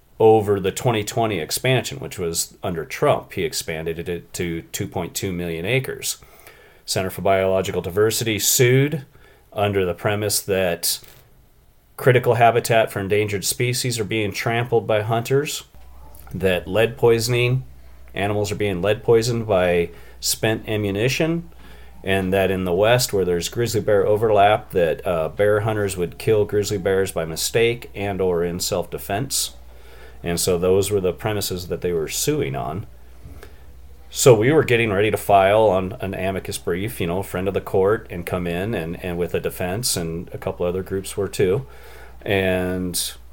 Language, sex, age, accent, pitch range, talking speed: English, male, 40-59, American, 85-110 Hz, 160 wpm